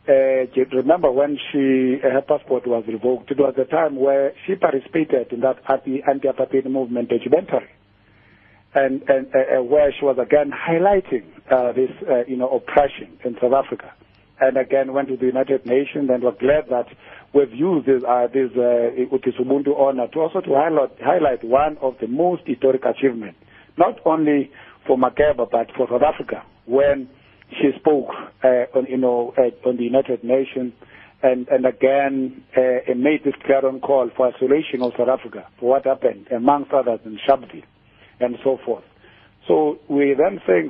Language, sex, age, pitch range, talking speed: English, male, 50-69, 125-140 Hz, 170 wpm